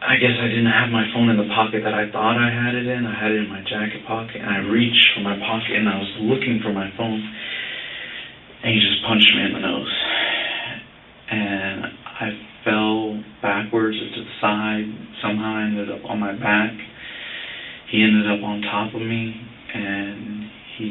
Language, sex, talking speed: English, male, 195 wpm